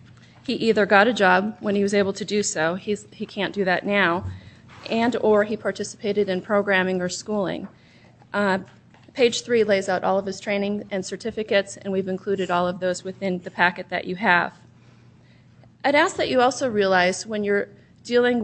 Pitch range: 185-215 Hz